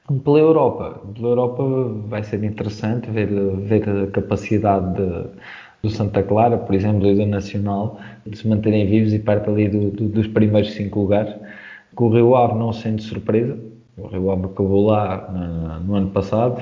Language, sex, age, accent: Portuguese, male, 20-39, Portuguese